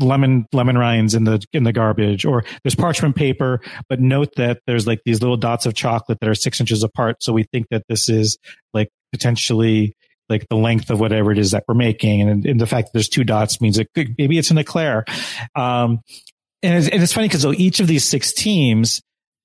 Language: English